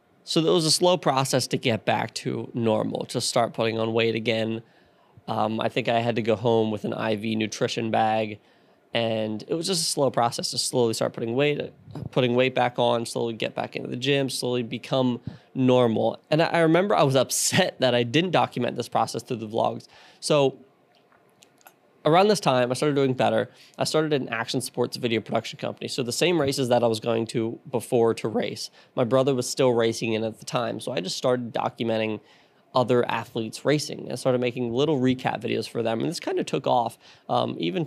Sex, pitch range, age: male, 115-135 Hz, 20-39